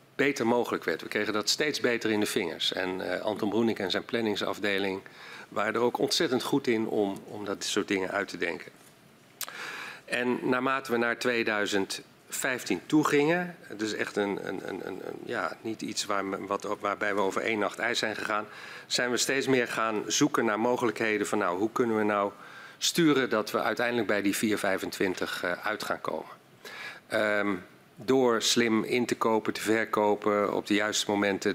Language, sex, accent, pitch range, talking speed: Dutch, male, Dutch, 100-115 Hz, 185 wpm